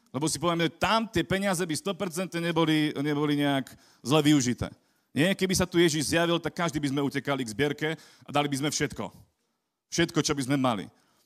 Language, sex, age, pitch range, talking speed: Slovak, male, 40-59, 140-170 Hz, 195 wpm